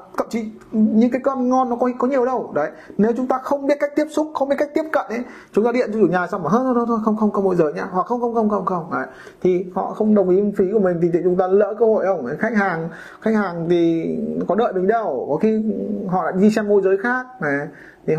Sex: male